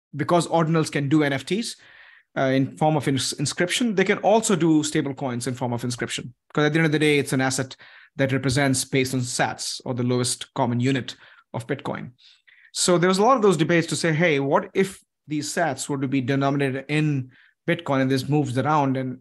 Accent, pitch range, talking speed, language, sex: Indian, 130-155 Hz, 210 wpm, English, male